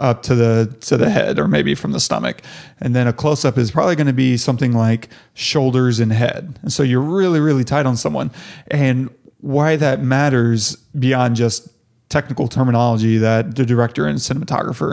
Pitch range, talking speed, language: 120-150 Hz, 190 wpm, English